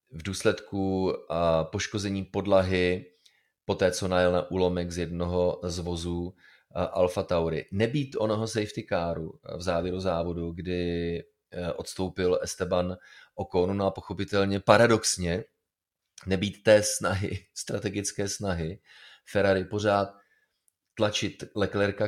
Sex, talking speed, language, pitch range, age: male, 110 wpm, Czech, 90-105 Hz, 30-49